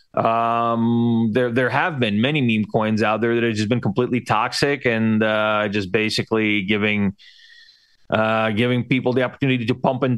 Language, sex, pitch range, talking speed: English, male, 115-150 Hz, 170 wpm